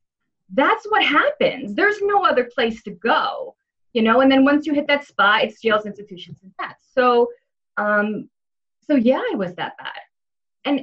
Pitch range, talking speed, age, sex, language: 200-275 Hz, 175 wpm, 20-39, female, English